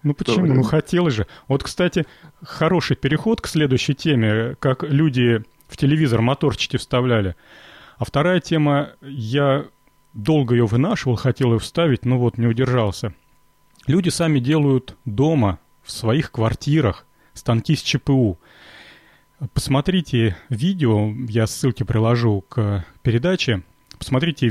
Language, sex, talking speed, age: Russian, male, 120 wpm, 30-49